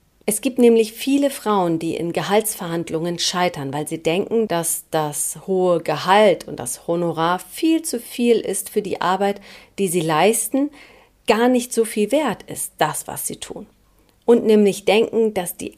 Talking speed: 165 wpm